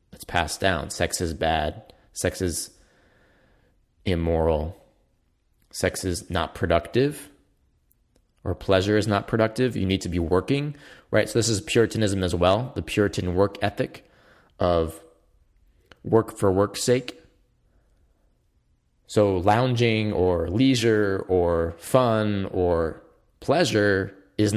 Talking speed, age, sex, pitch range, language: 115 wpm, 20-39, male, 90-115 Hz, English